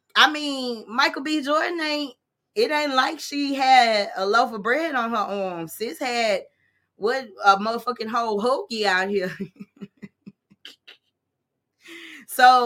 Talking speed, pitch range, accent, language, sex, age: 135 wpm, 195-250 Hz, American, English, female, 20-39